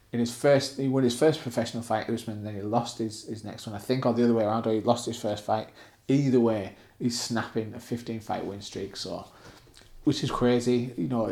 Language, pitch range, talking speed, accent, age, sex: English, 110-120 Hz, 240 wpm, British, 20-39, male